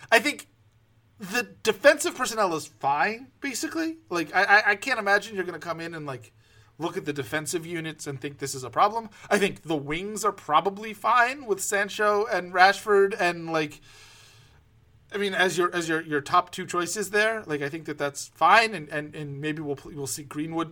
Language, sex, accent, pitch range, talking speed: English, male, American, 150-205 Hz, 195 wpm